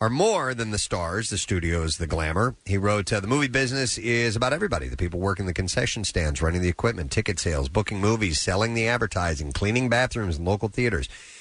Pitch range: 95-120 Hz